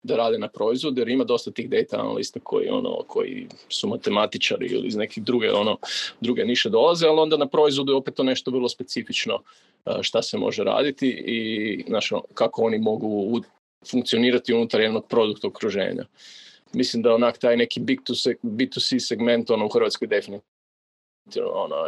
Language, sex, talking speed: Croatian, male, 170 wpm